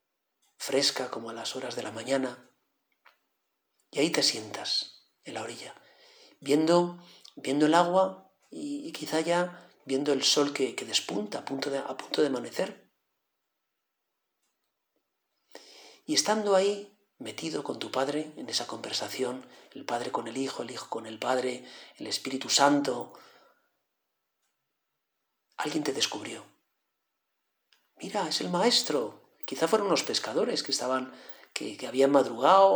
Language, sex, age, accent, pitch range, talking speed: Spanish, male, 40-59, Spanish, 135-175 Hz, 140 wpm